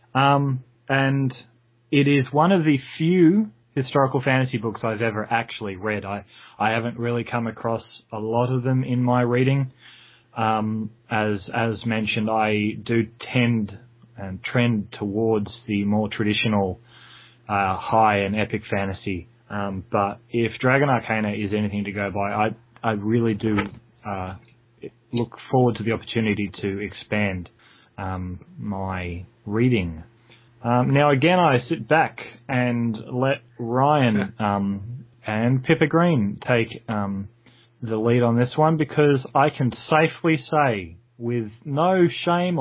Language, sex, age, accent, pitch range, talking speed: English, male, 20-39, Australian, 105-130 Hz, 140 wpm